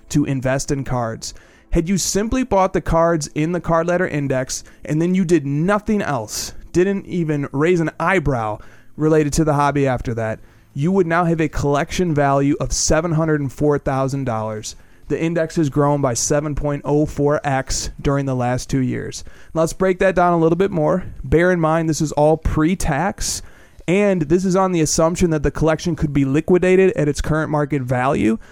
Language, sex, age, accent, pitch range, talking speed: English, male, 30-49, American, 140-170 Hz, 190 wpm